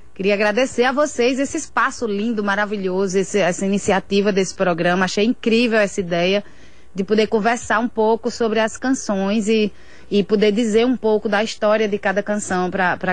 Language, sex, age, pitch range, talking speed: Portuguese, female, 20-39, 190-230 Hz, 170 wpm